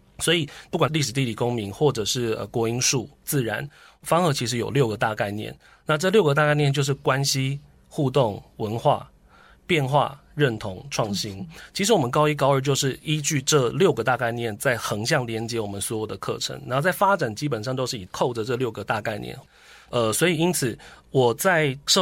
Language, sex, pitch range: Chinese, male, 115-150 Hz